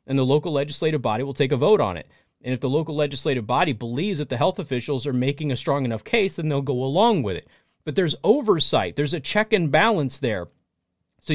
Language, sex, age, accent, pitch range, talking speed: English, male, 30-49, American, 125-185 Hz, 235 wpm